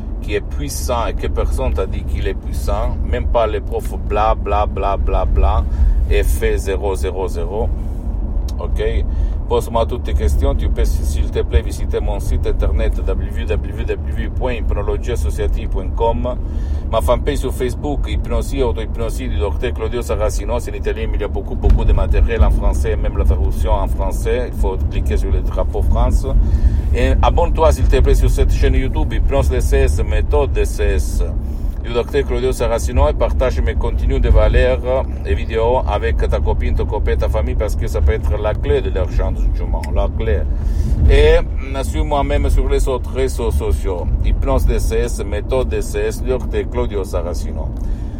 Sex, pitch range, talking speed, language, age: male, 70-85 Hz, 170 wpm, Italian, 50-69